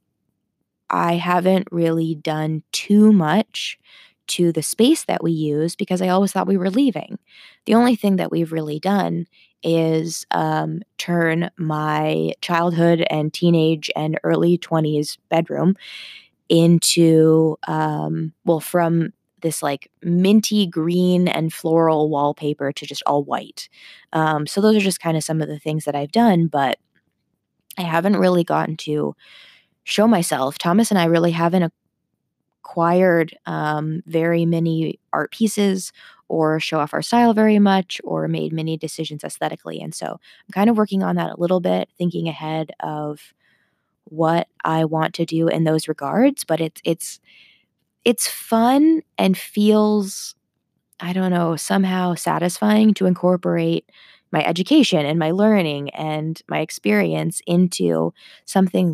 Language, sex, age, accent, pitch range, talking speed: English, female, 20-39, American, 155-190 Hz, 145 wpm